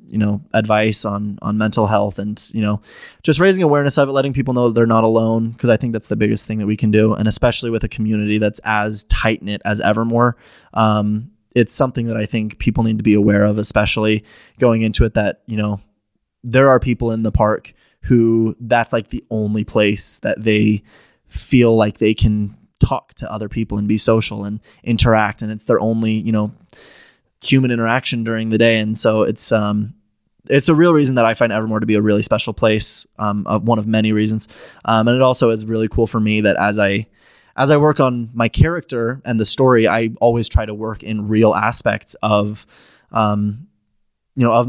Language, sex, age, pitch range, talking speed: English, male, 20-39, 105-115 Hz, 210 wpm